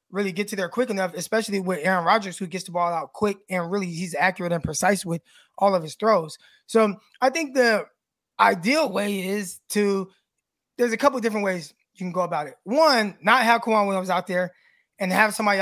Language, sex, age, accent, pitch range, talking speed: English, male, 20-39, American, 190-230 Hz, 215 wpm